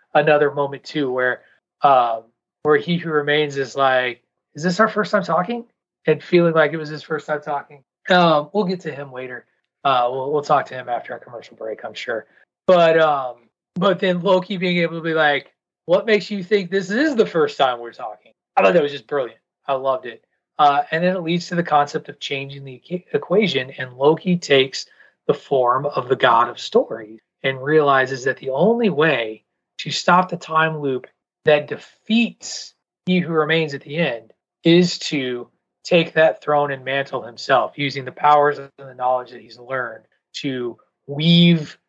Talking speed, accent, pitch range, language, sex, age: 190 wpm, American, 135-175 Hz, English, male, 30-49